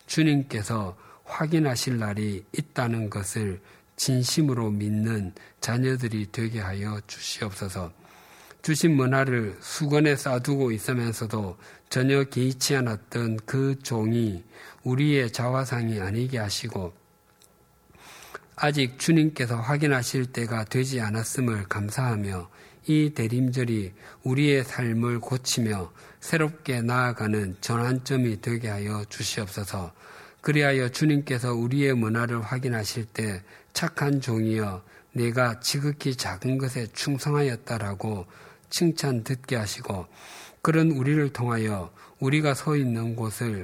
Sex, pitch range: male, 105-135 Hz